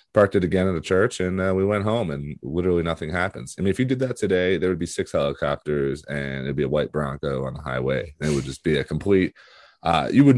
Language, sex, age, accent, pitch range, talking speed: English, male, 30-49, American, 70-85 Hz, 265 wpm